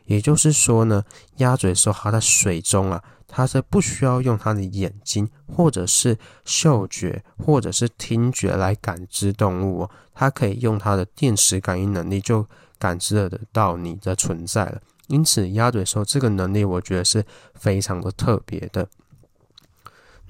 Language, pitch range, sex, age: Chinese, 95-125 Hz, male, 20-39